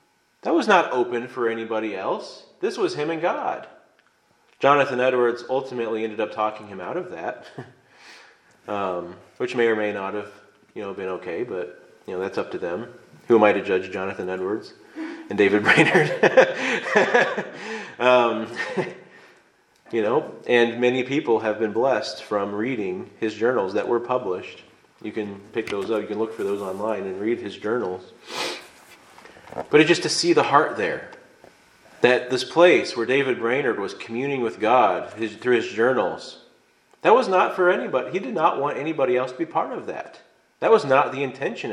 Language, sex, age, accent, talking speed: English, male, 30-49, American, 175 wpm